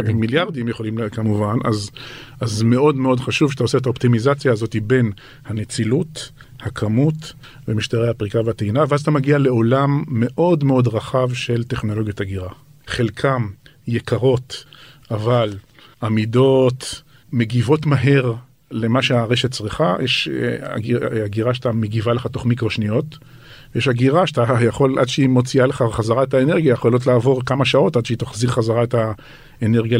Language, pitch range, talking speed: Hebrew, 115-135 Hz, 135 wpm